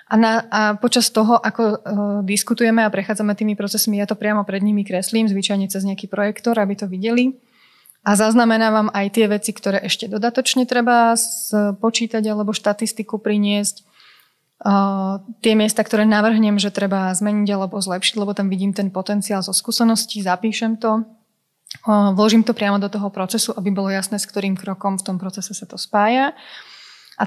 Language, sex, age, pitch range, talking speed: Slovak, female, 20-39, 195-220 Hz, 170 wpm